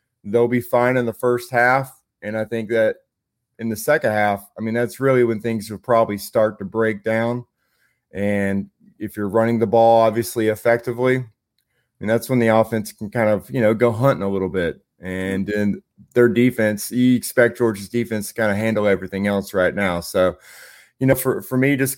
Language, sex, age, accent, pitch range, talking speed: English, male, 30-49, American, 110-130 Hz, 200 wpm